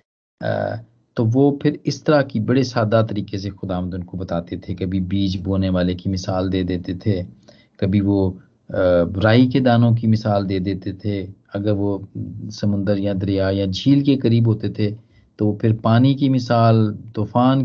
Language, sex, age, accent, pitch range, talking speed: Hindi, male, 40-59, native, 95-115 Hz, 170 wpm